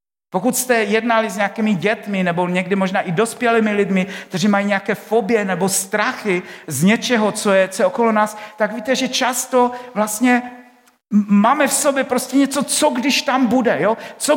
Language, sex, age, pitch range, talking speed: Czech, male, 50-69, 195-240 Hz, 175 wpm